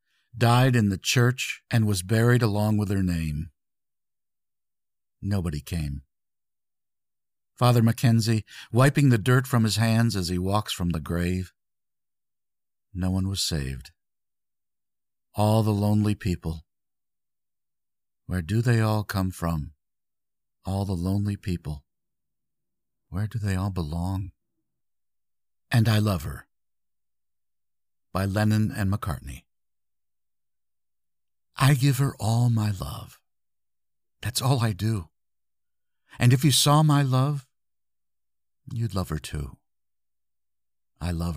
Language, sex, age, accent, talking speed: English, male, 50-69, American, 115 wpm